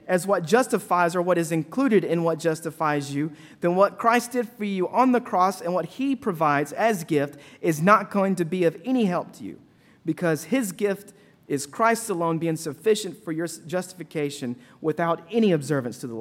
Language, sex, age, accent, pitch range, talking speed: English, male, 40-59, American, 160-215 Hz, 195 wpm